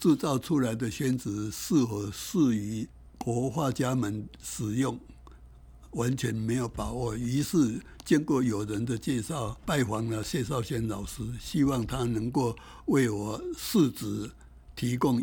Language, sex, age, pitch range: Chinese, male, 60-79, 105-130 Hz